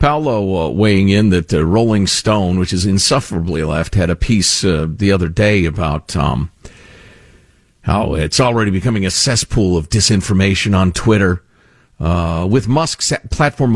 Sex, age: male, 50-69